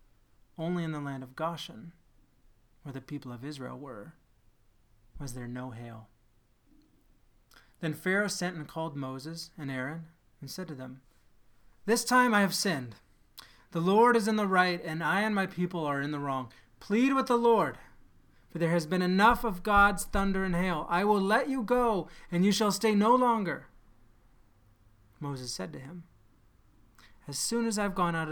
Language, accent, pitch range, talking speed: English, American, 120-170 Hz, 180 wpm